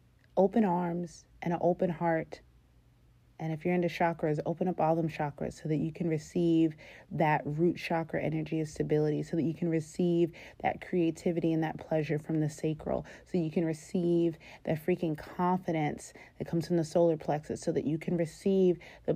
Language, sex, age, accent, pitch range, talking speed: English, female, 30-49, American, 155-175 Hz, 185 wpm